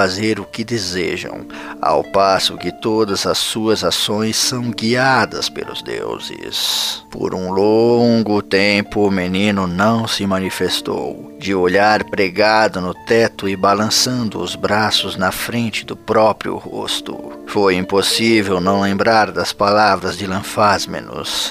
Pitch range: 95-110 Hz